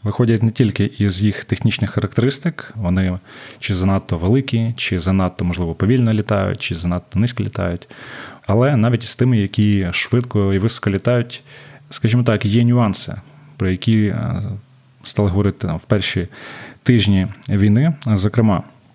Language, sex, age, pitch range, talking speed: Ukrainian, male, 20-39, 100-120 Hz, 135 wpm